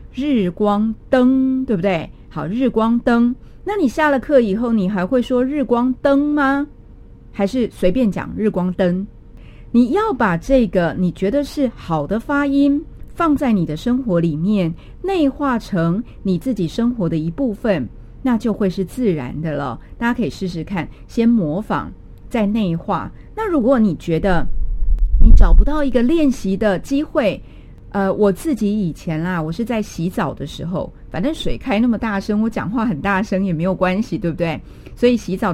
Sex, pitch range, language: female, 180-255 Hz, Chinese